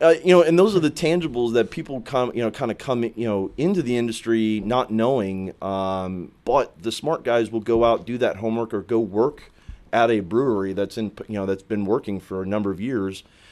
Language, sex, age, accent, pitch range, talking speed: English, male, 30-49, American, 95-115 Hz, 230 wpm